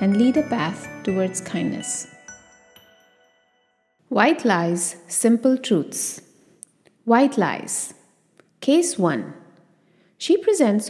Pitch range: 180-290 Hz